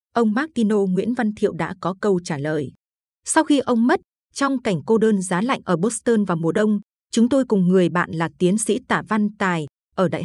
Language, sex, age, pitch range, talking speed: Vietnamese, female, 20-39, 180-230 Hz, 230 wpm